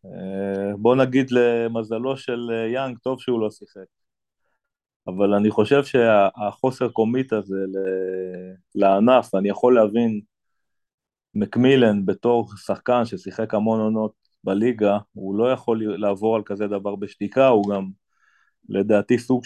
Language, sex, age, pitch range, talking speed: Hebrew, male, 30-49, 100-120 Hz, 115 wpm